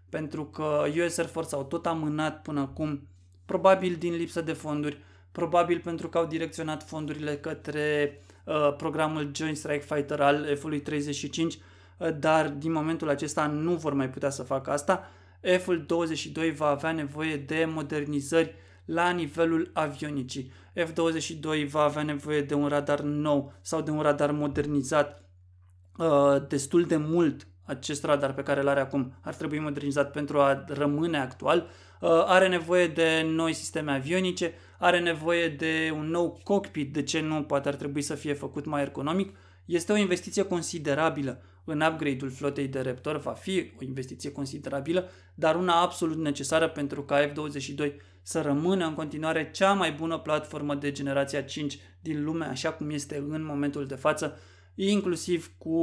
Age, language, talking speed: 20-39, Romanian, 160 wpm